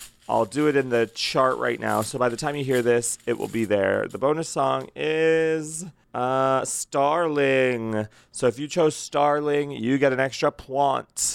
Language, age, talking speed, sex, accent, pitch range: English, 30-49, 185 wpm, male, American, 115-150 Hz